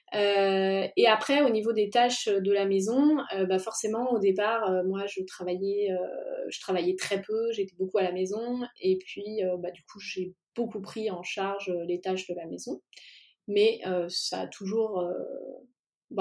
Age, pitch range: 20-39, 185-235 Hz